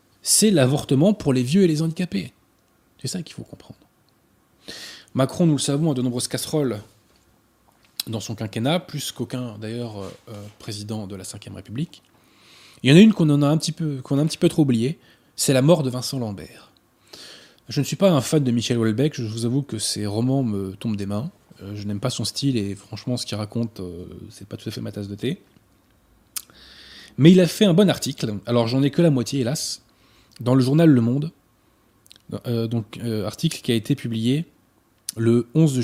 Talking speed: 200 wpm